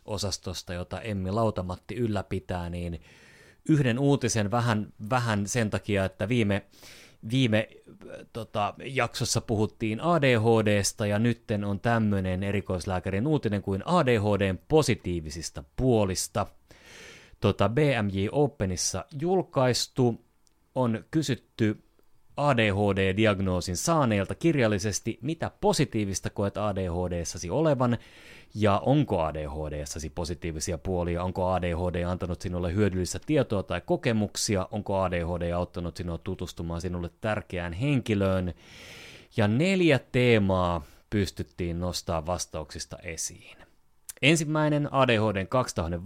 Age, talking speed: 30-49, 90 wpm